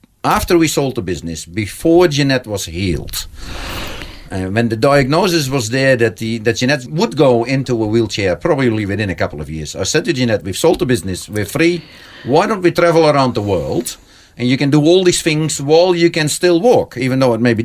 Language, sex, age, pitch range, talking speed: English, male, 50-69, 110-145 Hz, 220 wpm